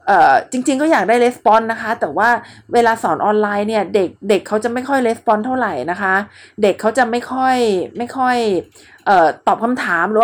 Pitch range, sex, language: 205-270 Hz, female, Thai